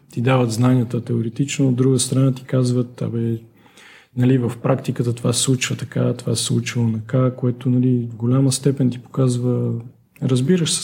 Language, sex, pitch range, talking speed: Bulgarian, male, 115-130 Hz, 165 wpm